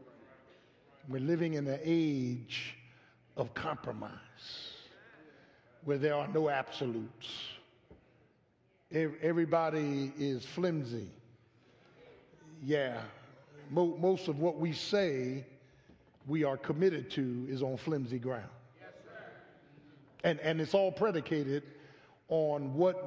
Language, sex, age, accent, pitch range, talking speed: English, male, 50-69, American, 135-175 Hz, 95 wpm